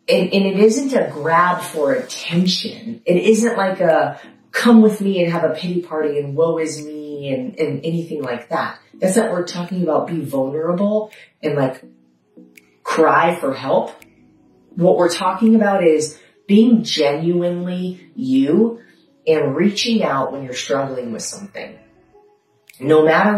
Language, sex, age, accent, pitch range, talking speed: English, female, 30-49, American, 145-195 Hz, 155 wpm